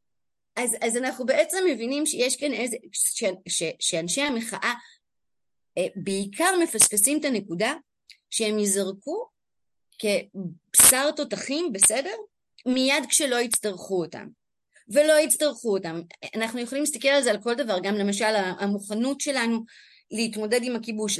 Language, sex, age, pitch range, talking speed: Hebrew, female, 30-49, 220-300 Hz, 125 wpm